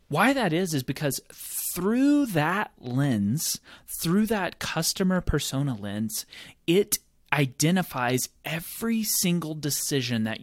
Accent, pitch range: American, 115-190 Hz